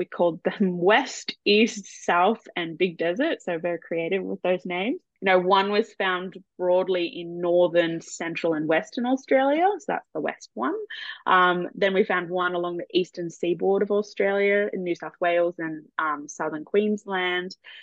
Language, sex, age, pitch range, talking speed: English, female, 20-39, 175-215 Hz, 170 wpm